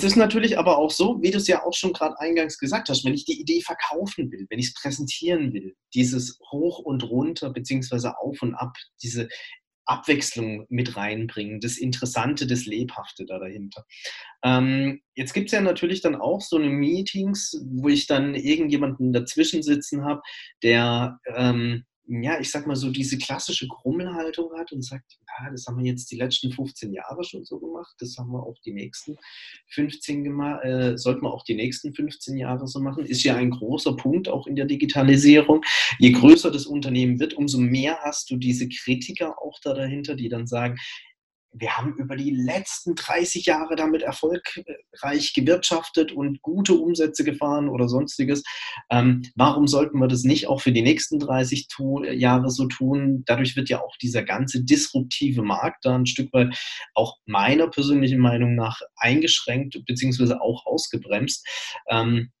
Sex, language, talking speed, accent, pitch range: male, German, 175 wpm, German, 125-150 Hz